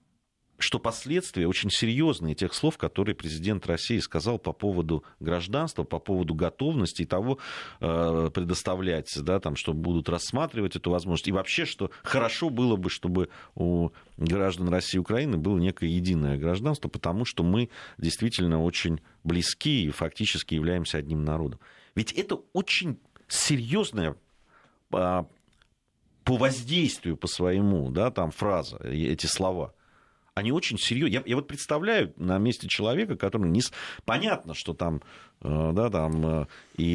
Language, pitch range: Russian, 85-125 Hz